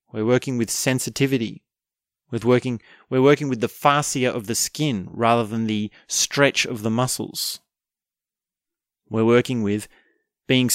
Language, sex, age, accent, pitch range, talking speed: English, male, 30-49, Australian, 110-135 Hz, 140 wpm